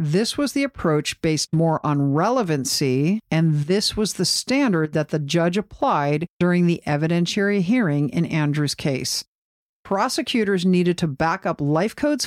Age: 50-69